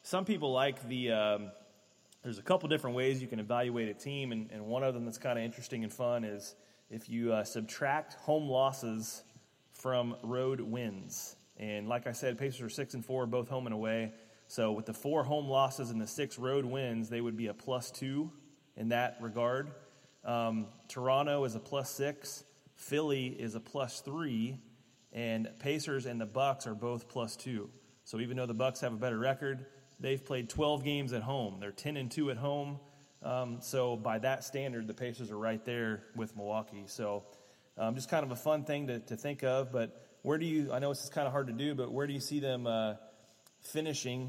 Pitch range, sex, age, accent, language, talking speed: 115-135 Hz, male, 30-49, American, English, 210 wpm